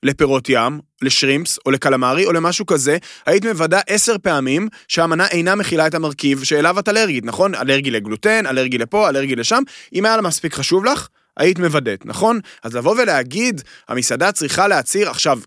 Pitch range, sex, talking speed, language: 140-200 Hz, male, 165 wpm, Hebrew